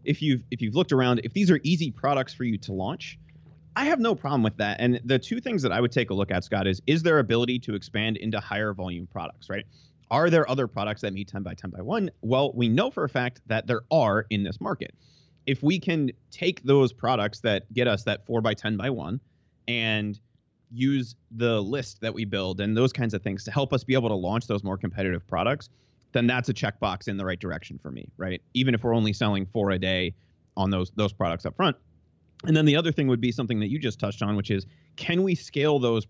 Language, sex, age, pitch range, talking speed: English, male, 30-49, 100-130 Hz, 250 wpm